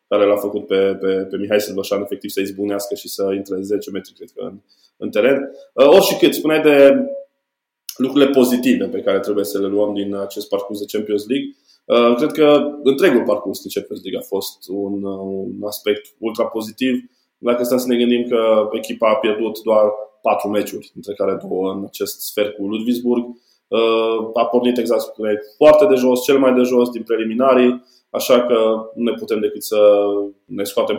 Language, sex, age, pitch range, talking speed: Romanian, male, 20-39, 100-125 Hz, 190 wpm